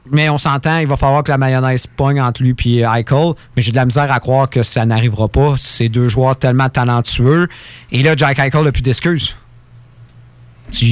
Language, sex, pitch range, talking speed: French, male, 120-150 Hz, 210 wpm